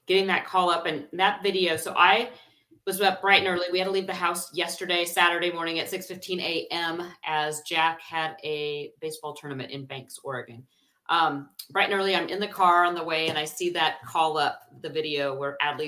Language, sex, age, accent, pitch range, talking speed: English, female, 40-59, American, 160-190 Hz, 210 wpm